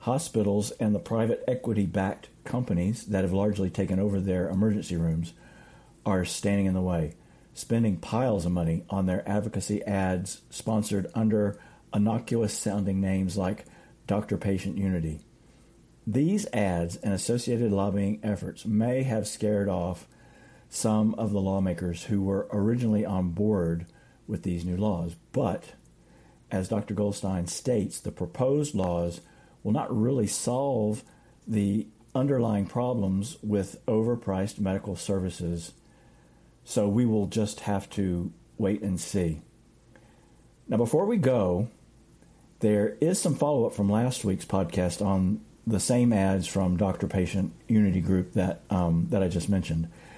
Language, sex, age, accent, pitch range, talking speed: English, male, 50-69, American, 95-110 Hz, 135 wpm